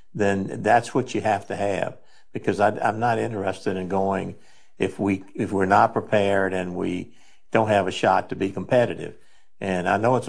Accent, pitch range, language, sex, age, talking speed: American, 95-105 Hz, English, male, 60-79, 190 wpm